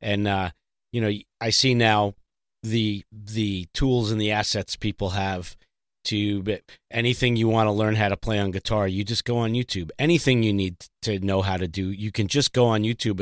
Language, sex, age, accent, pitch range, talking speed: English, male, 40-59, American, 105-130 Hz, 205 wpm